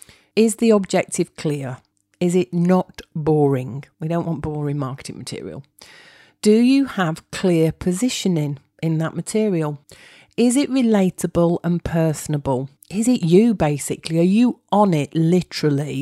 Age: 40-59